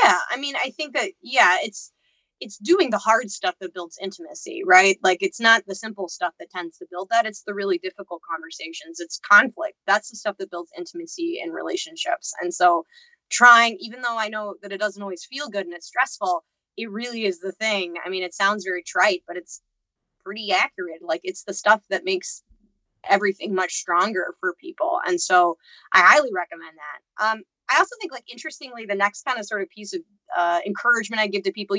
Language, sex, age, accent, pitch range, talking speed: English, female, 20-39, American, 190-260 Hz, 210 wpm